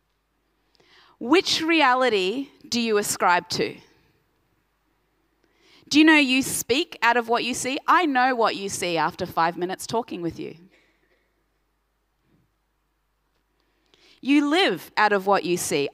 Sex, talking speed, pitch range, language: female, 130 wpm, 225-300 Hz, English